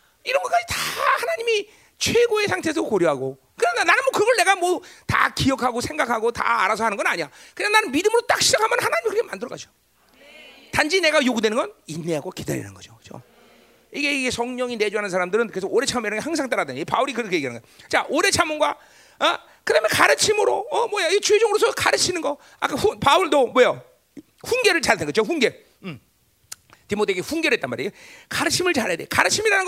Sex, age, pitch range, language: male, 40-59, 250-415 Hz, Korean